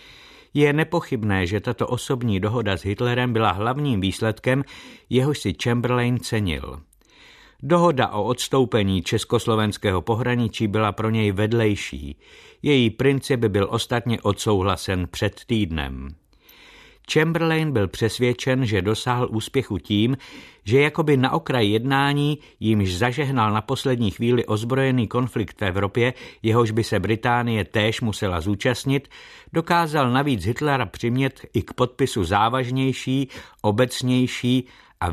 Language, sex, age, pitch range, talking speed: Czech, male, 50-69, 105-130 Hz, 120 wpm